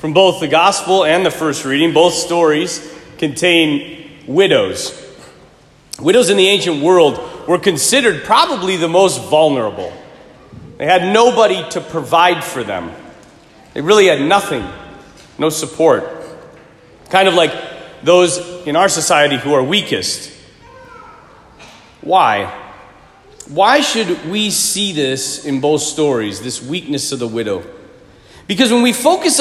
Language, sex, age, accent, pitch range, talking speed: English, male, 40-59, American, 155-195 Hz, 130 wpm